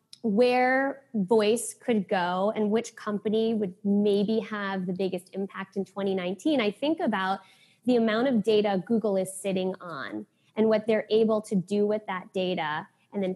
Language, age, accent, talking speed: English, 20-39, American, 165 wpm